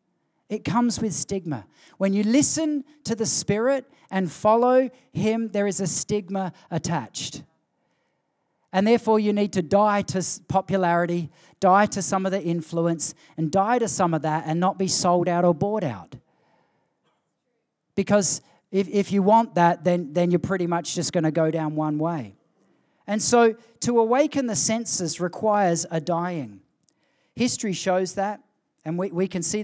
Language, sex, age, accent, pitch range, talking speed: English, male, 40-59, Australian, 170-220 Hz, 165 wpm